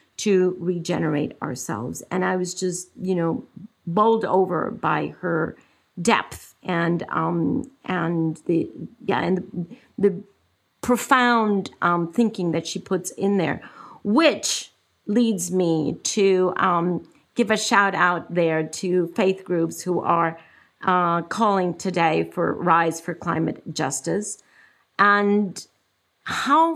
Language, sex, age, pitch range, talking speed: English, female, 50-69, 180-230 Hz, 125 wpm